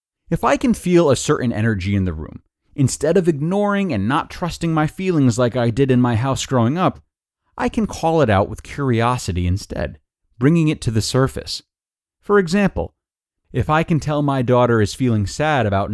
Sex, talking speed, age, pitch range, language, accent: male, 190 wpm, 30-49, 95-140 Hz, English, American